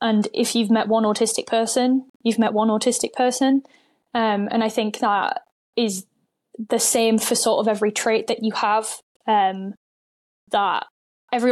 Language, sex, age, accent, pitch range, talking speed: English, female, 10-29, British, 215-245 Hz, 160 wpm